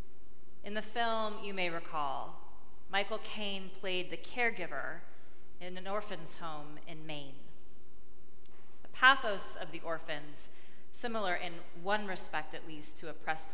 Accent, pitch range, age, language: American, 155-205 Hz, 30-49, English